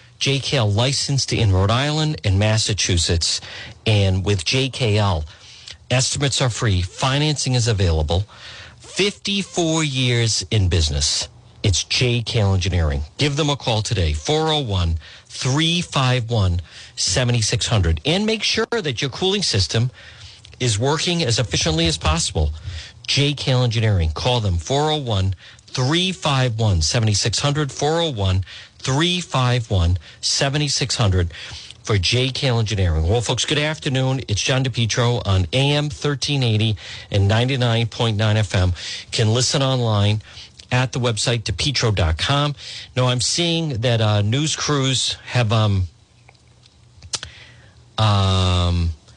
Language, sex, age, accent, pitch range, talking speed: English, male, 50-69, American, 100-130 Hz, 100 wpm